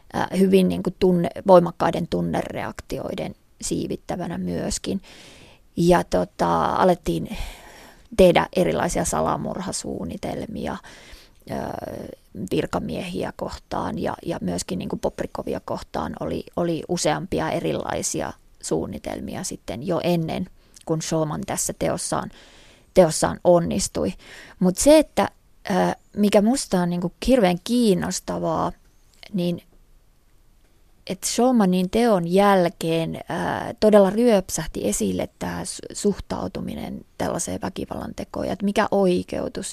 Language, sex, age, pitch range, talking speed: Finnish, female, 20-39, 175-195 Hz, 95 wpm